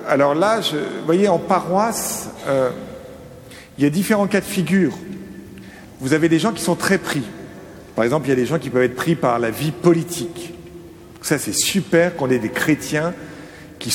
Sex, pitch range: male, 130-180 Hz